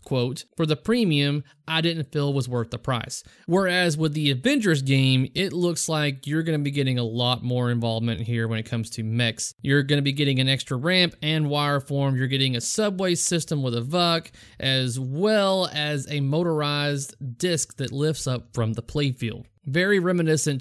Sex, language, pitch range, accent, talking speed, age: male, English, 130-160 Hz, American, 195 wpm, 30-49